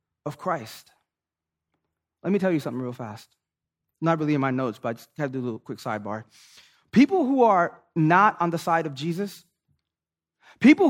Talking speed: 185 wpm